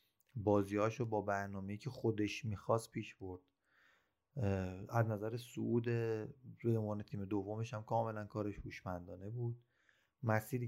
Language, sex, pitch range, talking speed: Persian, male, 100-130 Hz, 110 wpm